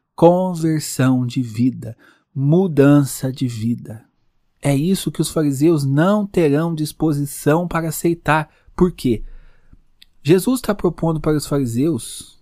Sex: male